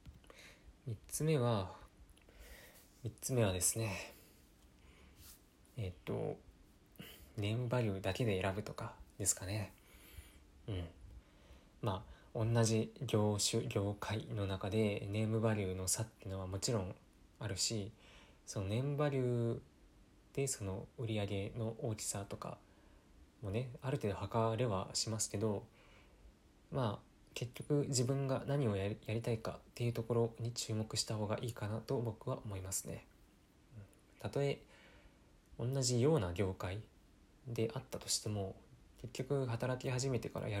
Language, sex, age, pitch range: Japanese, male, 20-39, 95-120 Hz